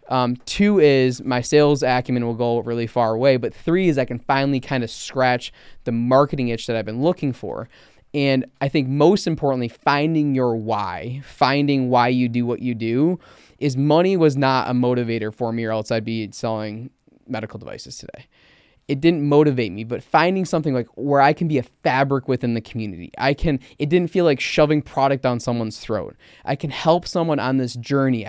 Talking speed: 200 wpm